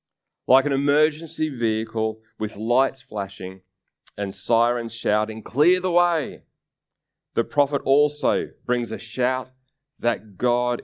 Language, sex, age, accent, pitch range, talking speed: English, male, 30-49, Australian, 95-135 Hz, 115 wpm